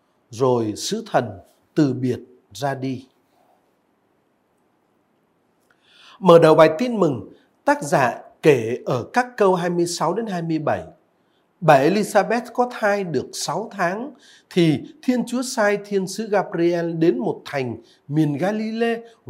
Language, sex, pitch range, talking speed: Vietnamese, male, 155-230 Hz, 120 wpm